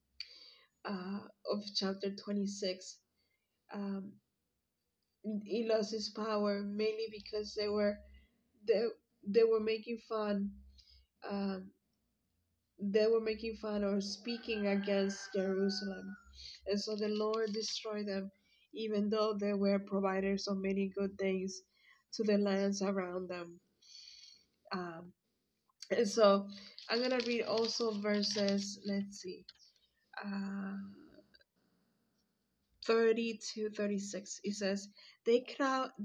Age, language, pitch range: 20-39, English, 195-215 Hz